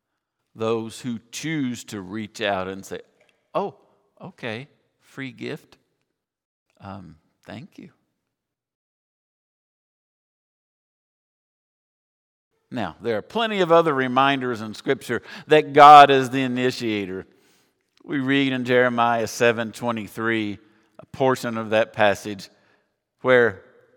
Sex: male